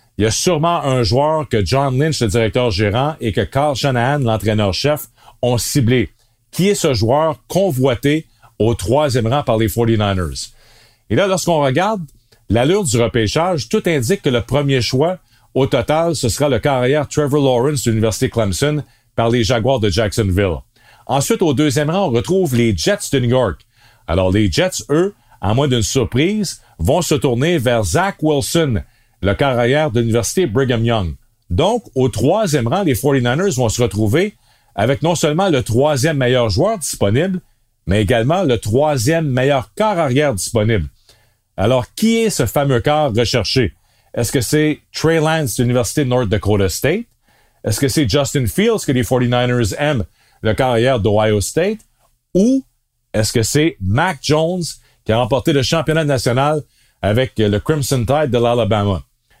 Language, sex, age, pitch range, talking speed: French, male, 40-59, 115-150 Hz, 165 wpm